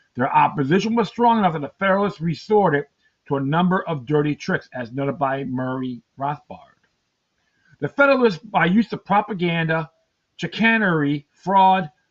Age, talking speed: 50-69, 140 wpm